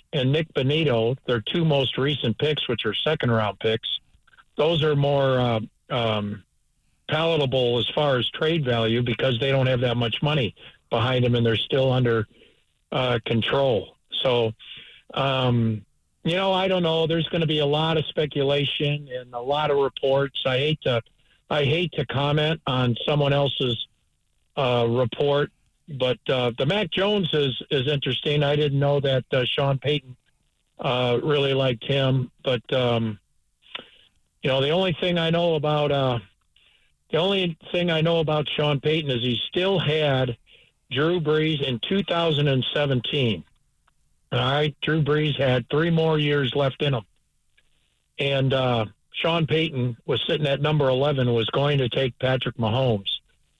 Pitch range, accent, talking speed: 120-150 Hz, American, 160 wpm